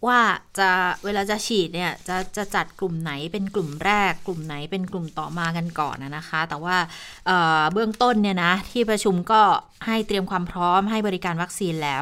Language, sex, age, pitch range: Thai, female, 20-39, 175-220 Hz